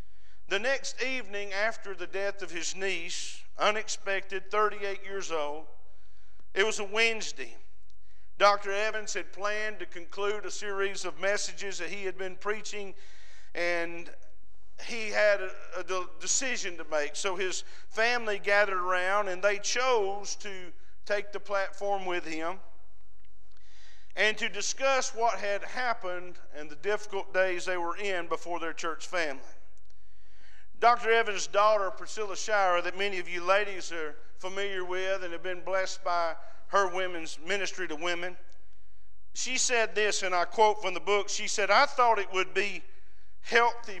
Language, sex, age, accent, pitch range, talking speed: English, male, 50-69, American, 175-210 Hz, 150 wpm